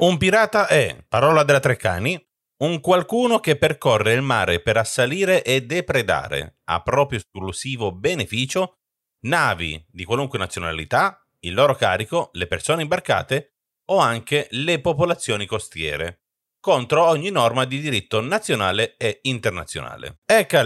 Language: Italian